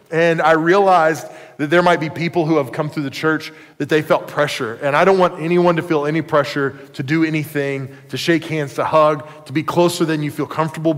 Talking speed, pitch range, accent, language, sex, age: 230 wpm, 145-165 Hz, American, English, male, 20-39